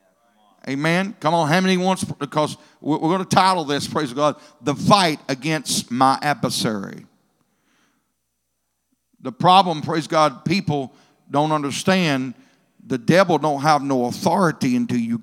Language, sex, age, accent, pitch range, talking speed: English, male, 50-69, American, 135-200 Hz, 135 wpm